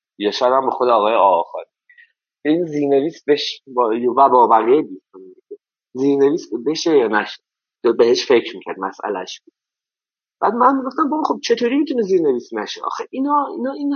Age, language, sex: 30-49, Persian, male